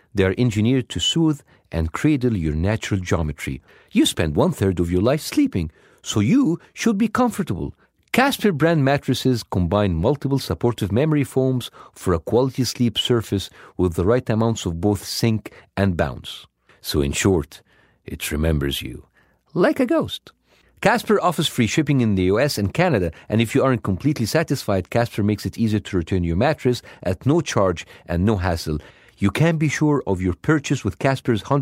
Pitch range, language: 95-135 Hz, English